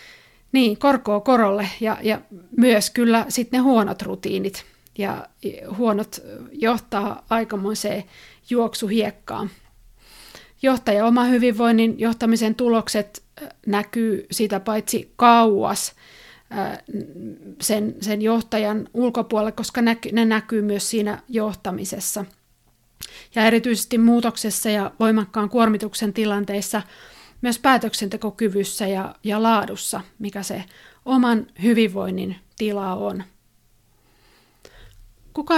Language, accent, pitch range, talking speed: Finnish, native, 205-235 Hz, 95 wpm